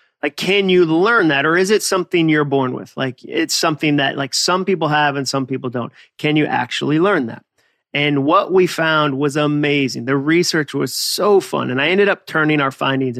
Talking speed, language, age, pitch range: 215 wpm, English, 30-49, 135-160 Hz